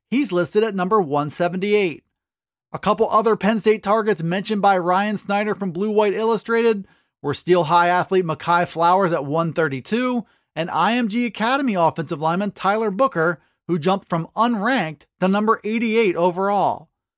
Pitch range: 165-215 Hz